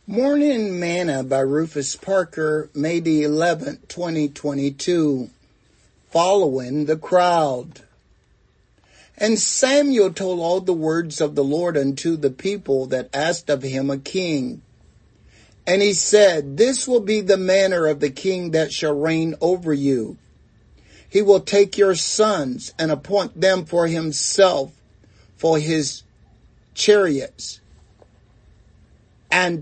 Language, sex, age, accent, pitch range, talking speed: English, male, 60-79, American, 140-185 Hz, 120 wpm